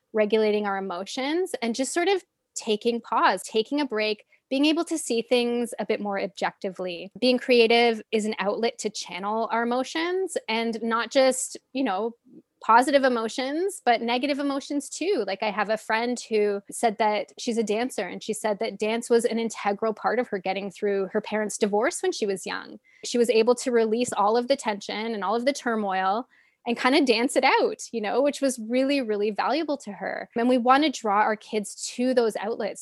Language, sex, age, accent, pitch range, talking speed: English, female, 20-39, American, 215-270 Hz, 205 wpm